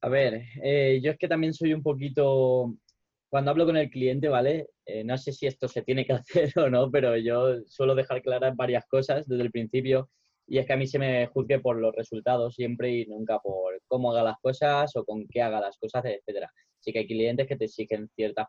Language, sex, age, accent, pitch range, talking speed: Spanish, male, 10-29, Spanish, 115-135 Hz, 230 wpm